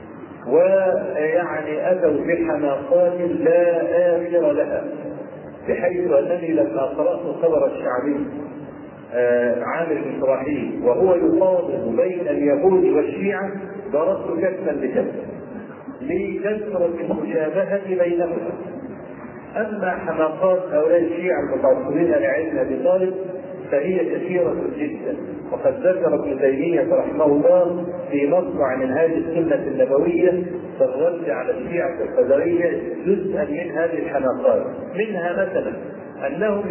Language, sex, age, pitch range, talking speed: Arabic, male, 40-59, 170-200 Hz, 95 wpm